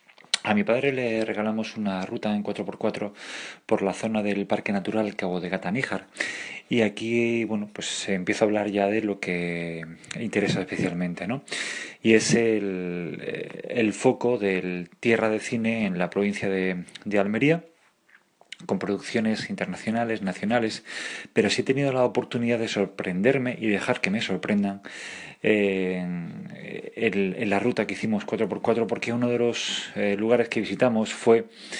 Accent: Spanish